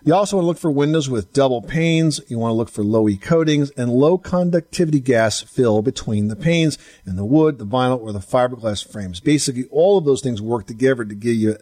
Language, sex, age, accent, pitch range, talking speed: English, male, 50-69, American, 110-170 Hz, 235 wpm